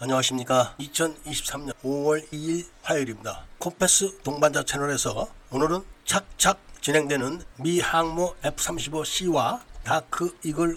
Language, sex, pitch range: Korean, male, 140-185 Hz